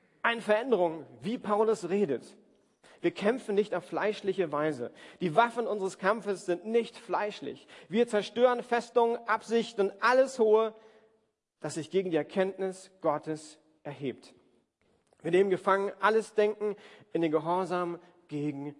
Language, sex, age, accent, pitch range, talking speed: German, male, 40-59, German, 180-230 Hz, 130 wpm